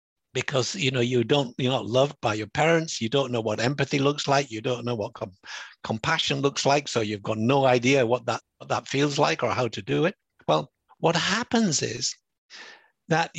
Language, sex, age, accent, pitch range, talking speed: English, male, 60-79, British, 135-180 Hz, 185 wpm